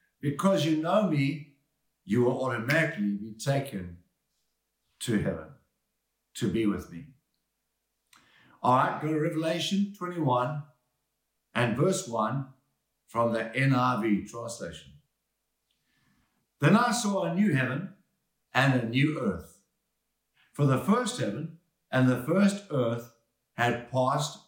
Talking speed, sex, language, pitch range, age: 120 wpm, male, English, 120-170 Hz, 60-79